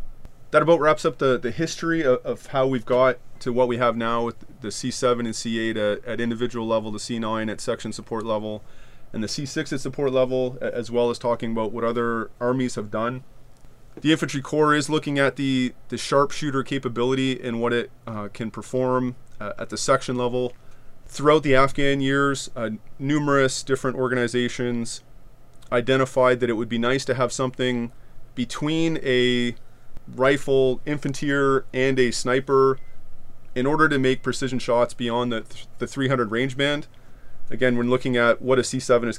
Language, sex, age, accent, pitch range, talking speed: English, male, 30-49, American, 115-135 Hz, 175 wpm